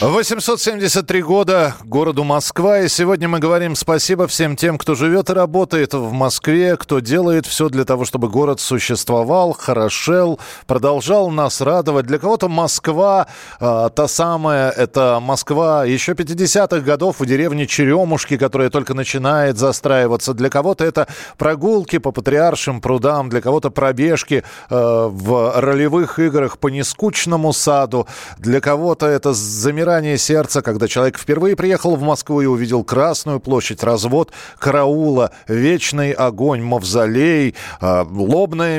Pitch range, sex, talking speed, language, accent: 130-170 Hz, male, 135 wpm, Russian, native